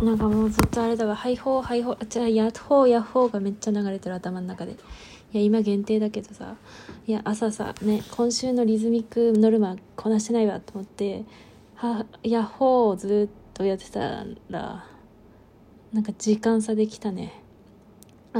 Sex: female